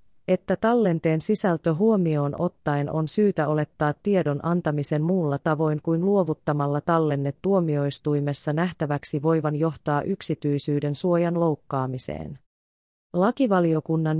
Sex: female